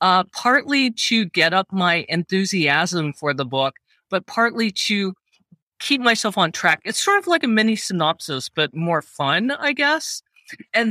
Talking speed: 165 wpm